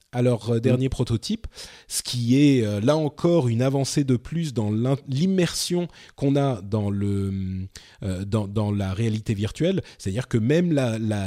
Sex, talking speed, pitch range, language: male, 165 wpm, 110-155 Hz, French